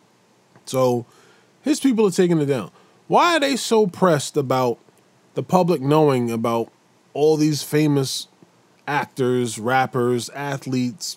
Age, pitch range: 20-39, 120-190 Hz